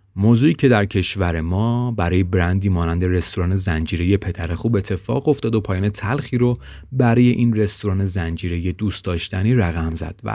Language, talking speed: Persian, 155 wpm